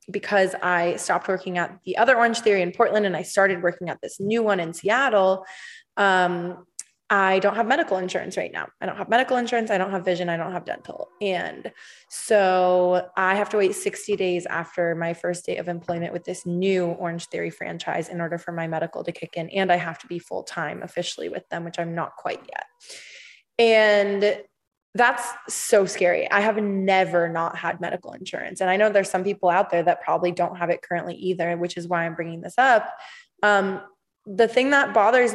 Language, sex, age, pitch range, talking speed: English, female, 20-39, 175-205 Hz, 205 wpm